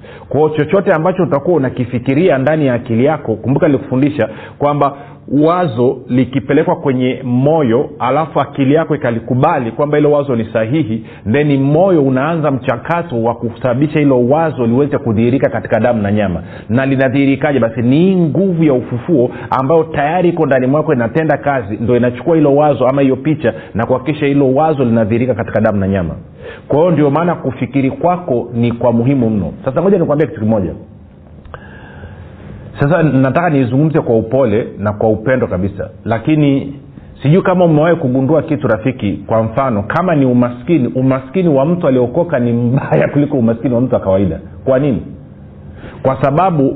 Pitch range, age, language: 115-150 Hz, 40-59, Swahili